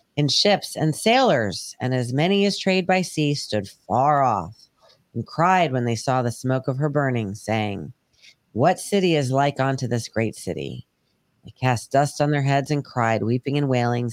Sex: female